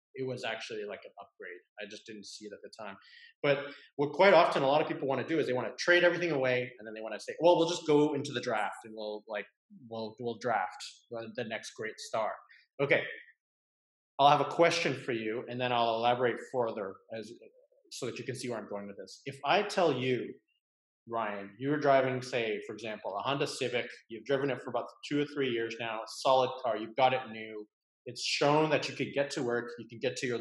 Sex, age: male, 30-49